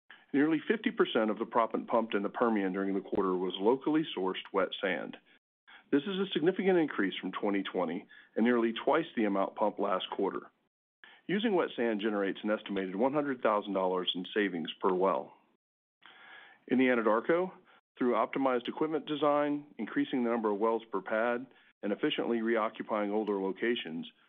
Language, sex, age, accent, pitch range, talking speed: English, male, 40-59, American, 100-140 Hz, 155 wpm